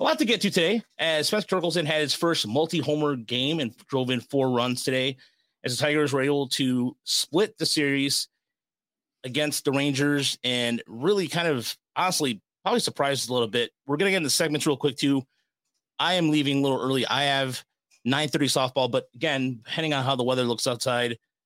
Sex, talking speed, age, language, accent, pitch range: male, 195 wpm, 30-49, English, American, 120-150 Hz